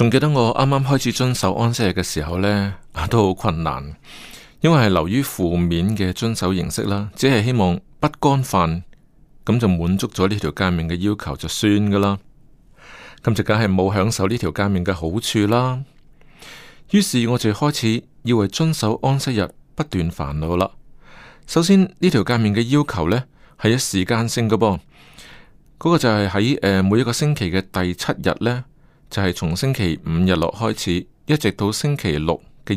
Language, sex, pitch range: Chinese, male, 90-125 Hz